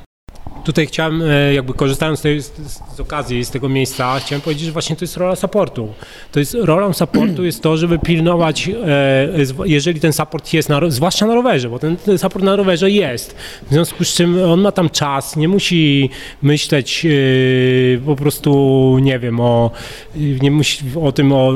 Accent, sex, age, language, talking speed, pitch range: native, male, 30-49, Polish, 185 wpm, 135-170 Hz